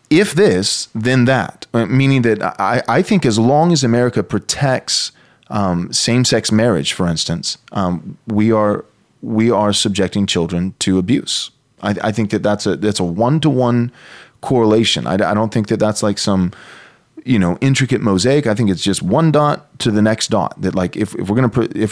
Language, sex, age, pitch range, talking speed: English, male, 30-49, 100-130 Hz, 185 wpm